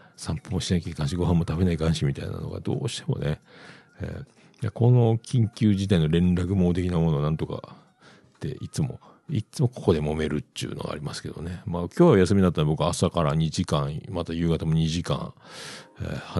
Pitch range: 85-130 Hz